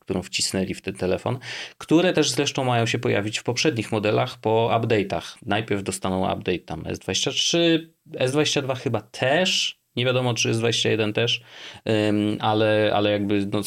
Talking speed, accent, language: 145 wpm, native, Polish